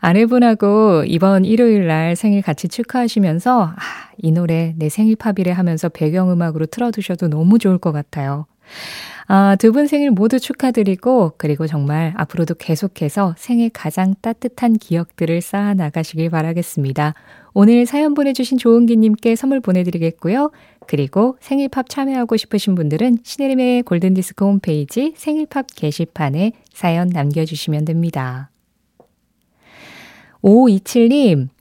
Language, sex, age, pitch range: Korean, female, 20-39, 165-235 Hz